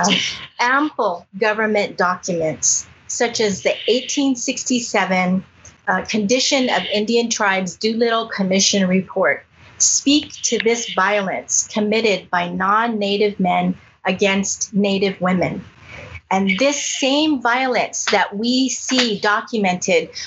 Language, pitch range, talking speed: English, 200-255 Hz, 105 wpm